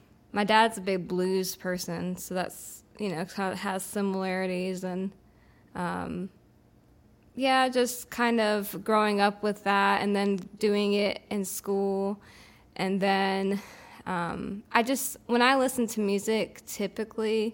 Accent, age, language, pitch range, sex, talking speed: American, 20-39, English, 190-215 Hz, female, 135 wpm